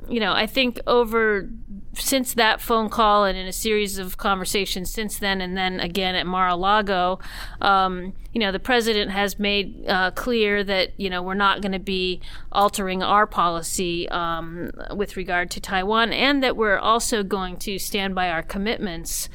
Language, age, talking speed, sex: English, 40-59, 175 wpm, female